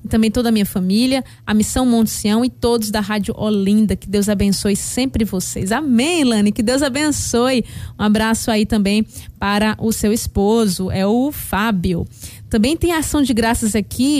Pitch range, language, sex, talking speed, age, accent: 210-270 Hz, Portuguese, female, 175 wpm, 20-39, Brazilian